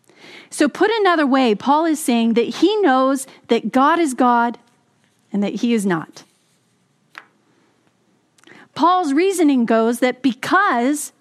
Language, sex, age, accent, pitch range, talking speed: English, female, 40-59, American, 245-335 Hz, 130 wpm